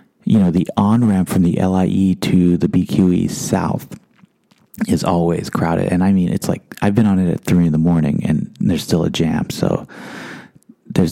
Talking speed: 190 wpm